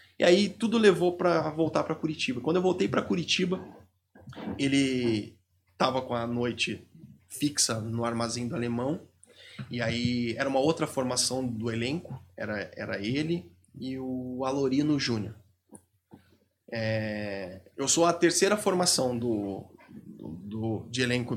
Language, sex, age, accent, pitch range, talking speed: Portuguese, male, 20-39, Brazilian, 115-155 Hz, 140 wpm